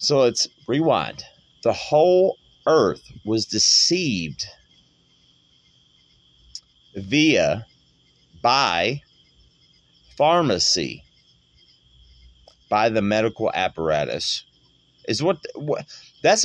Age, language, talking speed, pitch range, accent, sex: 30-49, English, 70 wpm, 100-165 Hz, American, male